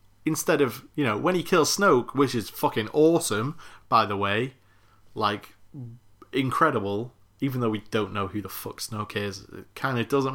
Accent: British